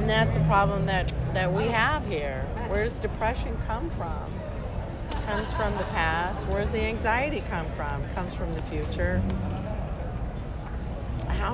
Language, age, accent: English, 40-59, American